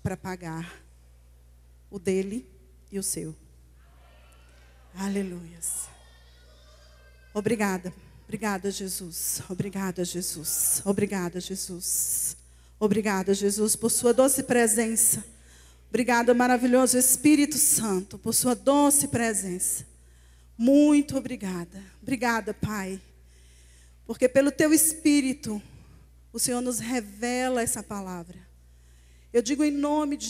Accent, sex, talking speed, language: Brazilian, female, 95 wpm, Portuguese